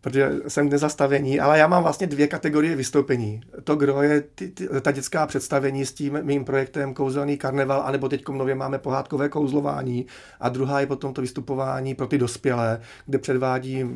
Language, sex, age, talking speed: Czech, male, 30-49, 175 wpm